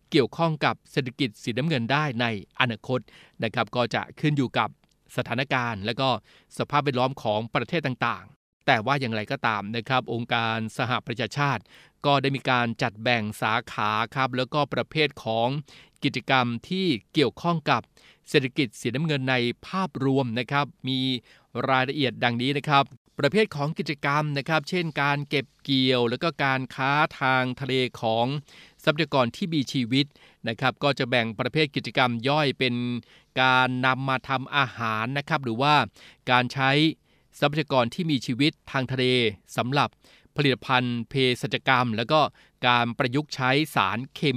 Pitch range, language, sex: 120-145 Hz, Thai, male